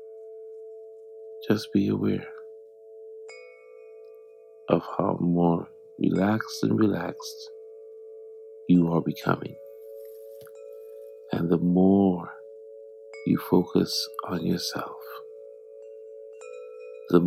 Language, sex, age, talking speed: English, male, 50-69, 70 wpm